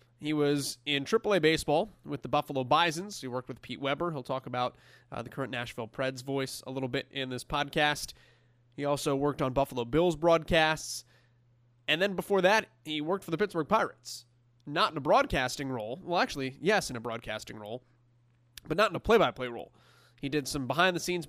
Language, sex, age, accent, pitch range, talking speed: English, male, 20-39, American, 125-175 Hz, 190 wpm